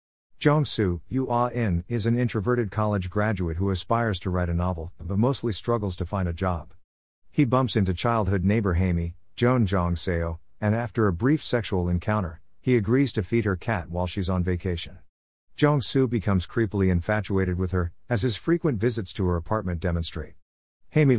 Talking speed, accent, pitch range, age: 175 wpm, American, 90-115 Hz, 50-69